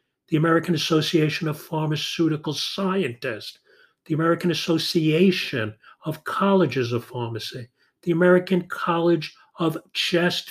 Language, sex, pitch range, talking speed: English, male, 130-180 Hz, 105 wpm